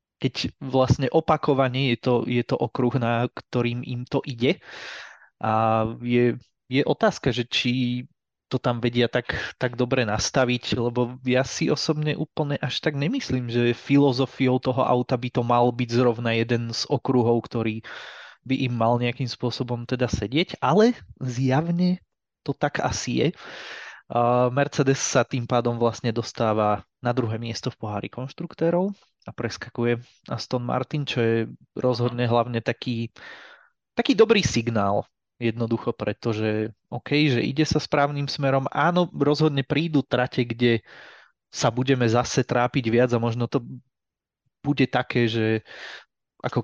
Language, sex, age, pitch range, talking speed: Czech, male, 20-39, 120-140 Hz, 140 wpm